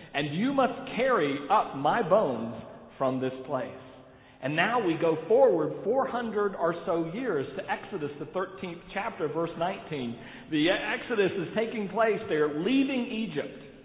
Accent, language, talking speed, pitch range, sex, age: American, English, 145 wpm, 150-225 Hz, male, 50-69